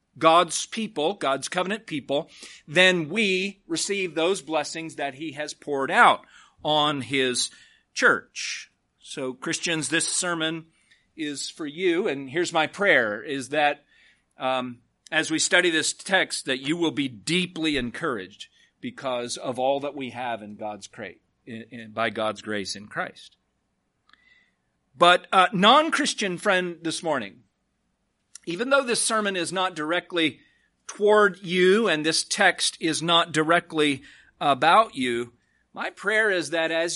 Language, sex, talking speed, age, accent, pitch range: English, male, 140 wpm, 40-59, American, 140-185 Hz